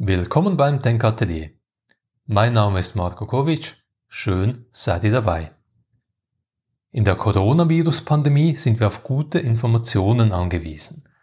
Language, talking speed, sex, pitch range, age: German, 110 wpm, male, 105-135 Hz, 30-49